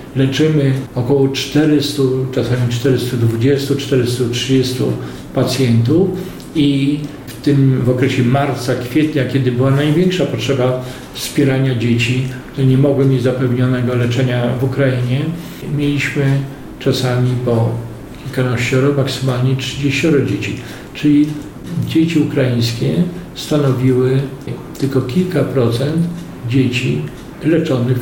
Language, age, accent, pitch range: Polish, 40-59, native, 125-140 Hz